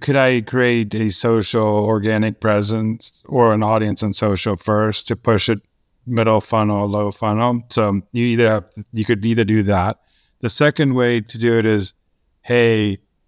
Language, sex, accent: English, male, American